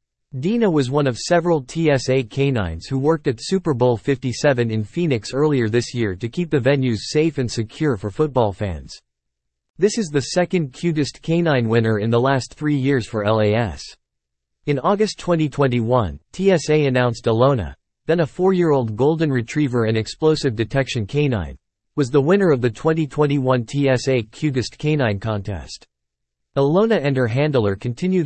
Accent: American